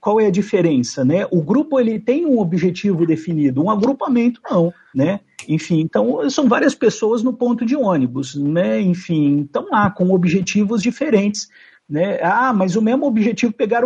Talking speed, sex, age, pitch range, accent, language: 180 wpm, male, 50-69, 170-235 Hz, Brazilian, Portuguese